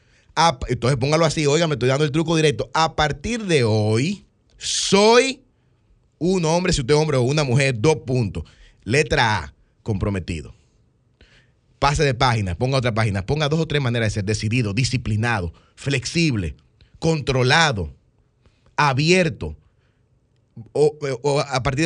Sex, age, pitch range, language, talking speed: male, 30-49, 95-140 Hz, Spanish, 140 wpm